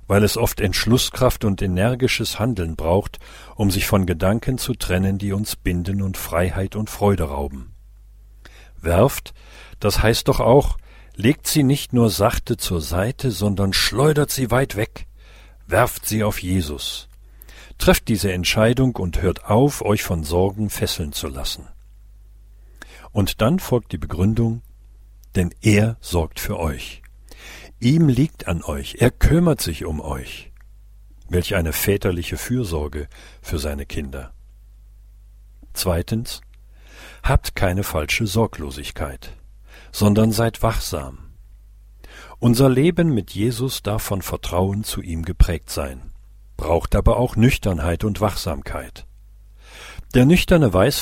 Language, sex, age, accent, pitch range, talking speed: German, male, 50-69, German, 90-115 Hz, 130 wpm